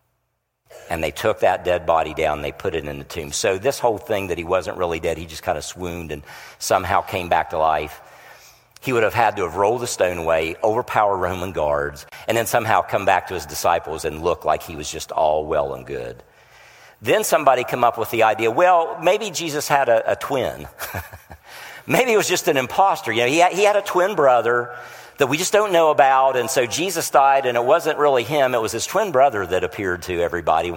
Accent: American